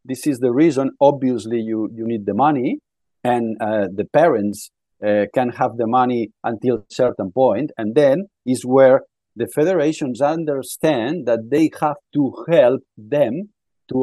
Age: 50-69